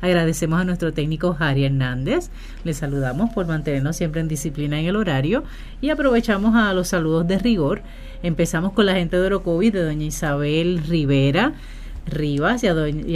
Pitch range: 155-205 Hz